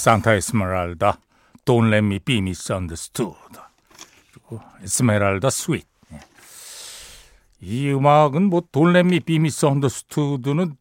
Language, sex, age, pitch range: Korean, male, 60-79, 105-155 Hz